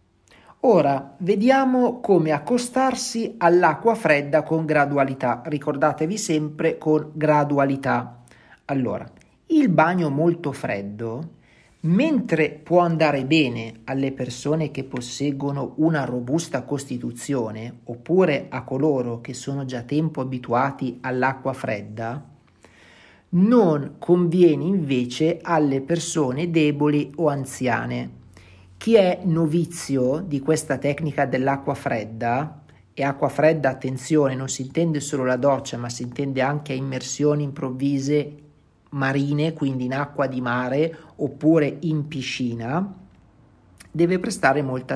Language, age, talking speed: Italian, 40-59, 110 wpm